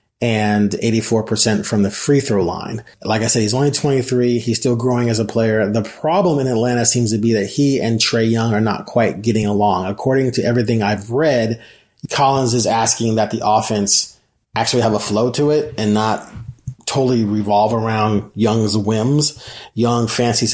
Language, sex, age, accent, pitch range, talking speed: English, male, 30-49, American, 110-130 Hz, 180 wpm